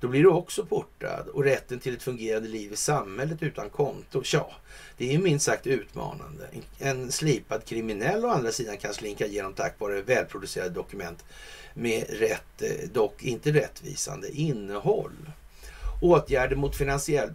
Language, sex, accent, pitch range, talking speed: Swedish, male, native, 125-200 Hz, 150 wpm